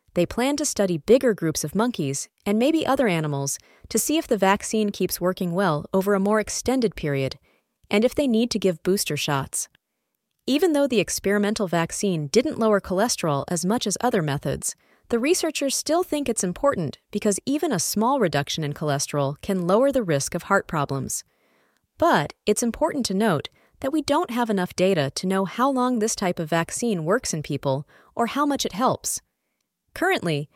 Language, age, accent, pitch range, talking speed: English, 30-49, American, 165-240 Hz, 185 wpm